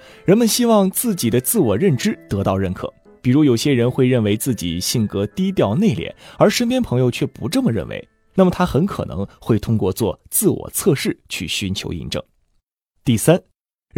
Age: 20-39